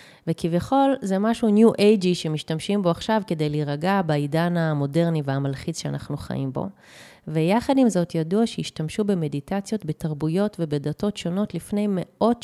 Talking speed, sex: 130 wpm, female